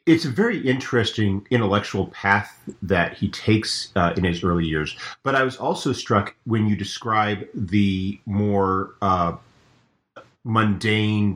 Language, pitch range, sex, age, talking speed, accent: English, 95-115 Hz, male, 40-59, 135 wpm, American